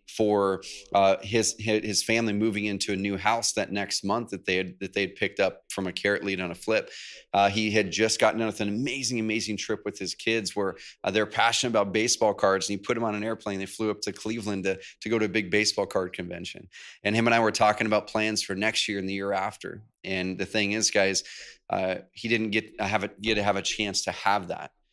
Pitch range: 100-115 Hz